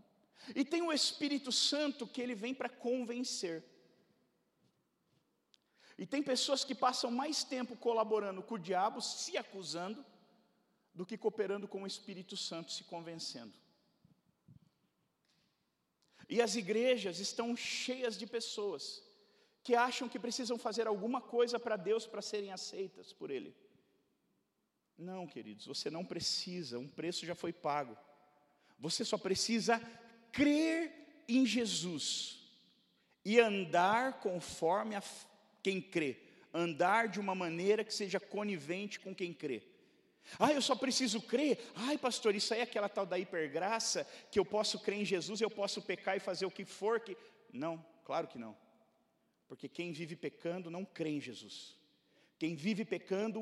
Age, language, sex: 40-59, Portuguese, male